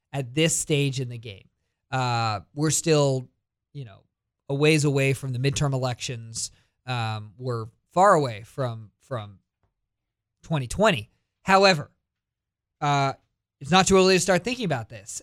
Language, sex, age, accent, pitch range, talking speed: English, male, 20-39, American, 120-165 Hz, 140 wpm